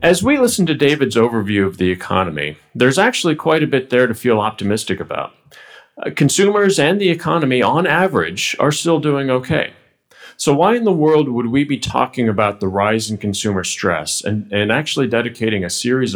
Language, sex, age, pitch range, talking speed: English, male, 40-59, 100-140 Hz, 190 wpm